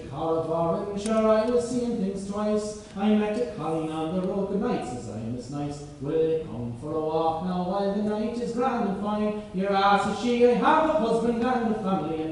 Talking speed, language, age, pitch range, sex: 230 wpm, Hungarian, 30-49, 160-230 Hz, male